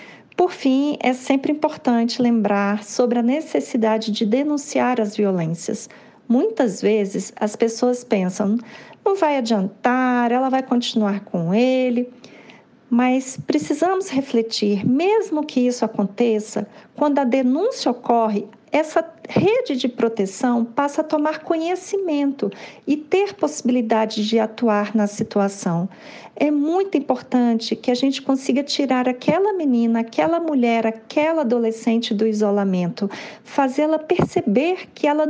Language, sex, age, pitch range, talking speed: Portuguese, female, 40-59, 220-285 Hz, 120 wpm